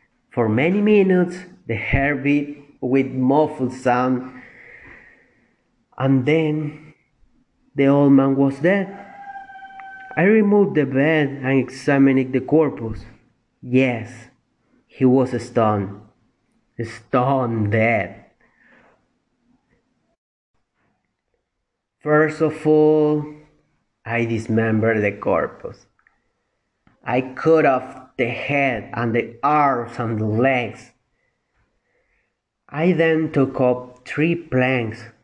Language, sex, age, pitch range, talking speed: English, male, 30-49, 115-145 Hz, 90 wpm